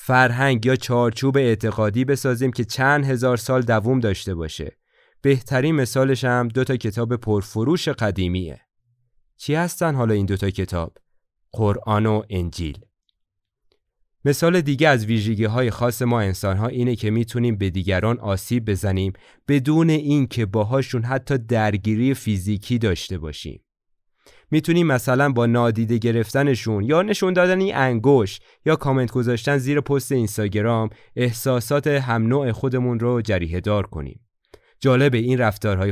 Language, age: Persian, 30-49